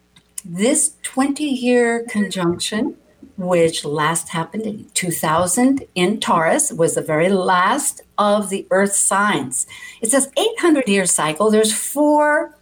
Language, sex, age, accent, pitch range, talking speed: English, female, 60-79, American, 165-245 Hz, 115 wpm